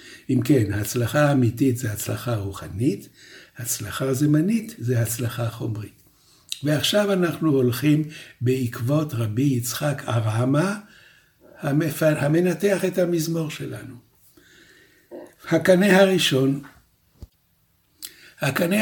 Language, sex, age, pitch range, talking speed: Hebrew, male, 60-79, 120-155 Hz, 85 wpm